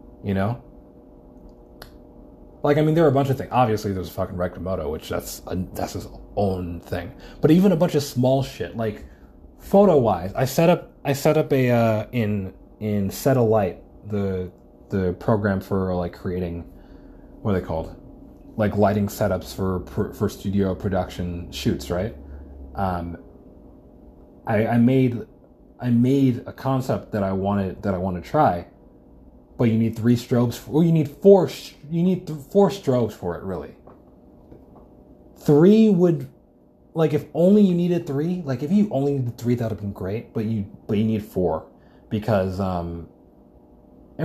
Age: 30-49